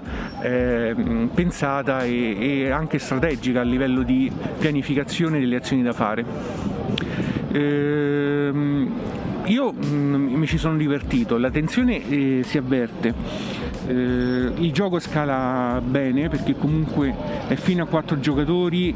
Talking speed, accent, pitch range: 115 wpm, native, 135-165 Hz